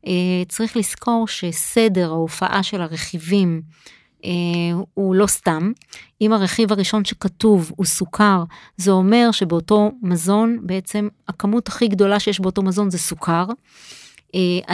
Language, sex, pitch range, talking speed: Hebrew, female, 180-210 Hz, 125 wpm